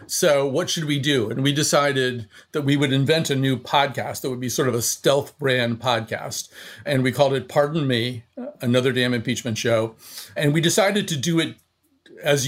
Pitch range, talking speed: 125-160 Hz, 195 wpm